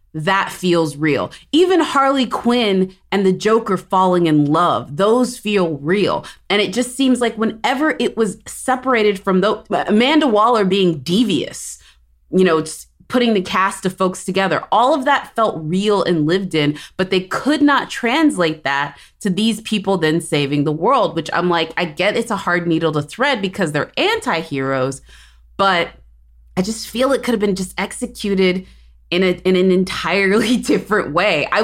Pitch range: 145-205 Hz